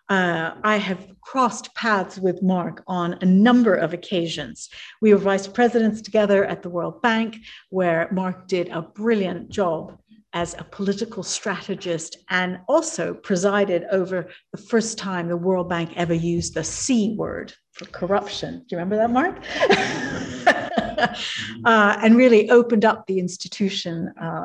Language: English